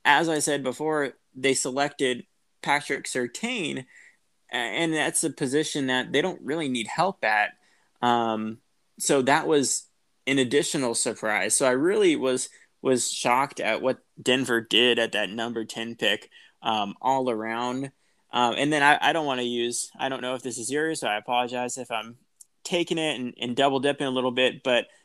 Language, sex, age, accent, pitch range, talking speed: English, male, 20-39, American, 115-140 Hz, 180 wpm